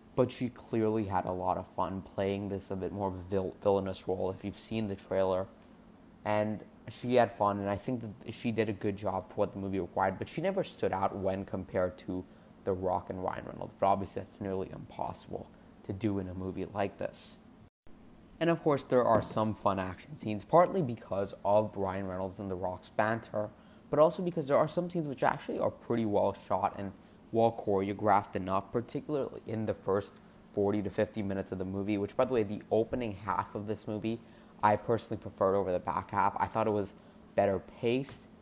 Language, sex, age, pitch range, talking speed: English, male, 20-39, 95-110 Hz, 205 wpm